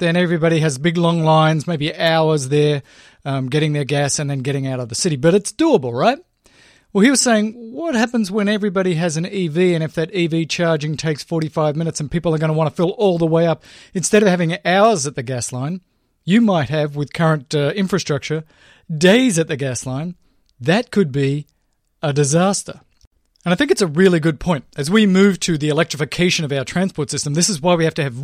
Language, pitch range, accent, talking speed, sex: English, 150-195 Hz, Australian, 225 wpm, male